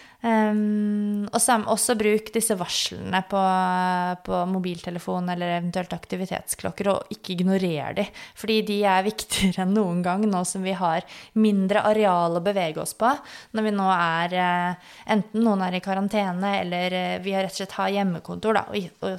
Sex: female